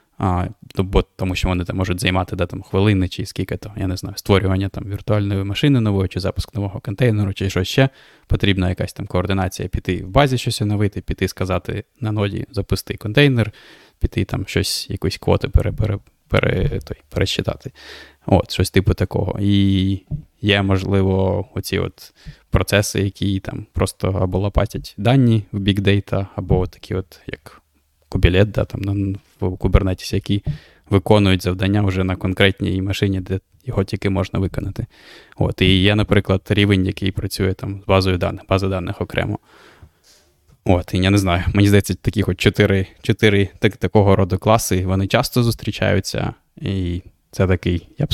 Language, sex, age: Ukrainian, male, 20-39